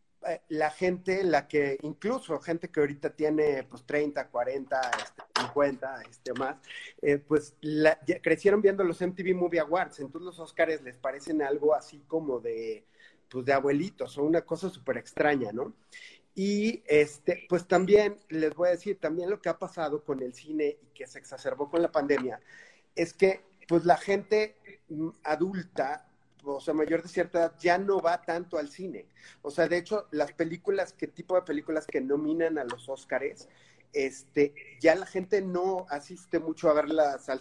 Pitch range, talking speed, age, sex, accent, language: 140-175 Hz, 175 wpm, 40-59, male, Mexican, Spanish